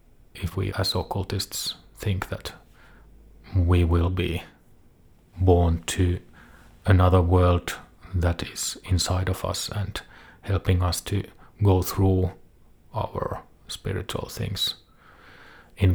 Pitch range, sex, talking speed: 85-95 Hz, male, 105 wpm